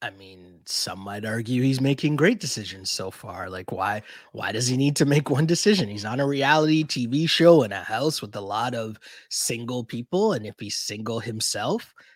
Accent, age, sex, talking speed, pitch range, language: American, 20-39, male, 200 wpm, 125-175 Hz, English